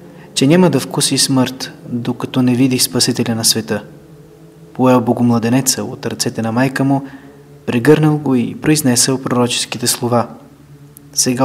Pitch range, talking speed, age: 120-145 Hz, 130 wpm, 20-39